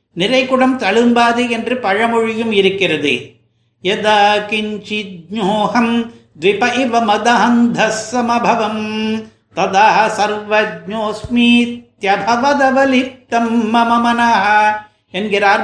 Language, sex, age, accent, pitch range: Tamil, male, 60-79, native, 200-240 Hz